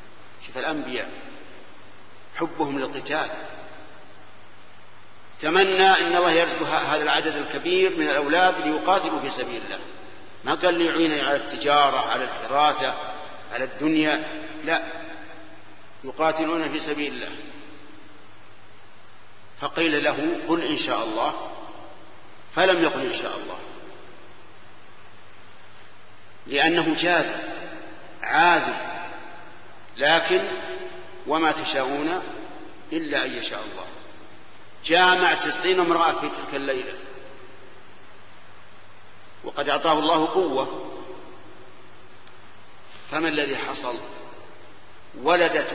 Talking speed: 85 wpm